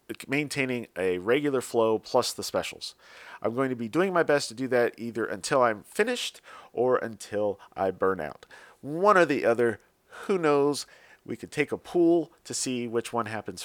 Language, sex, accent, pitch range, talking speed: English, male, American, 110-145 Hz, 185 wpm